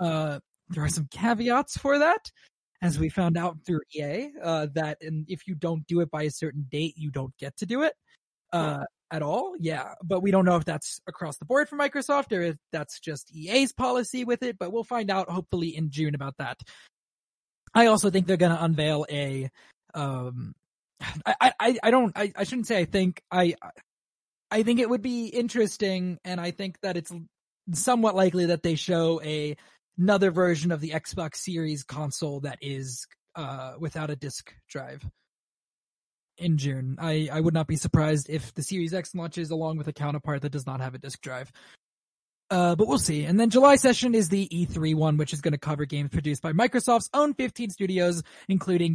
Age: 20-39